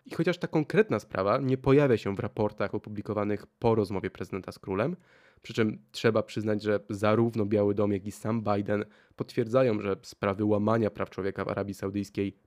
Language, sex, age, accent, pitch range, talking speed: Polish, male, 20-39, native, 105-135 Hz, 180 wpm